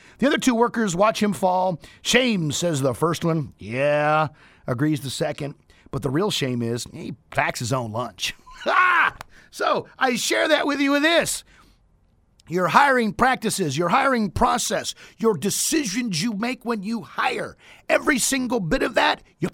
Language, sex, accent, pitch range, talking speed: English, male, American, 140-235 Hz, 165 wpm